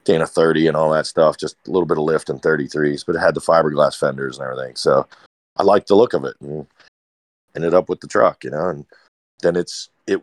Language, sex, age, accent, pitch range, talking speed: English, male, 40-59, American, 75-95 Hz, 245 wpm